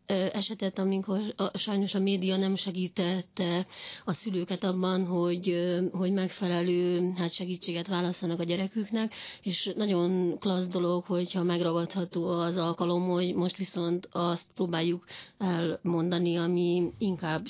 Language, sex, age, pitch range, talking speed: Hungarian, female, 30-49, 170-190 Hz, 115 wpm